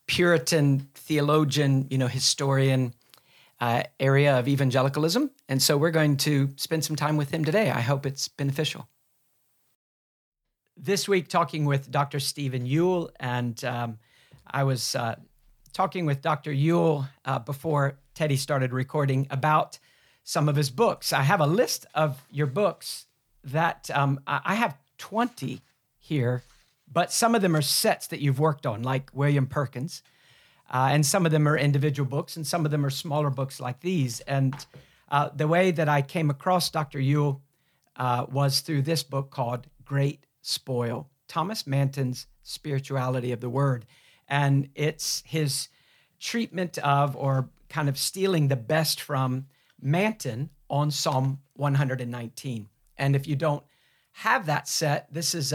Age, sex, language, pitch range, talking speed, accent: 50-69, male, English, 135-155 Hz, 155 wpm, American